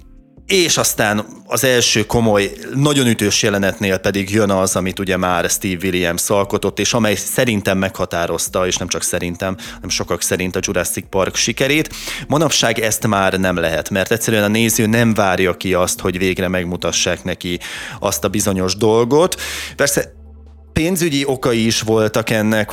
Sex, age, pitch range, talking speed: male, 20-39, 95-115 Hz, 155 wpm